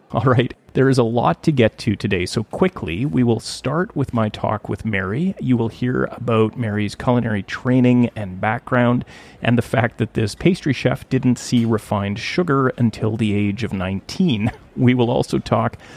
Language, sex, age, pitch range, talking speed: English, male, 30-49, 105-125 Hz, 185 wpm